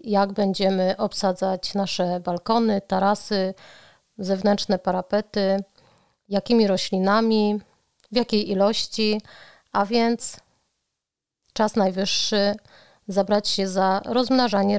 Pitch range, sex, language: 195-220 Hz, female, Polish